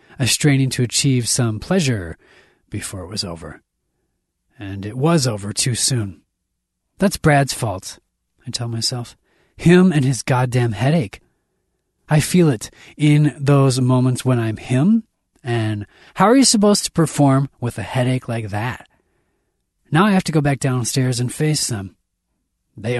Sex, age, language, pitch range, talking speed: male, 30-49, English, 105-145 Hz, 155 wpm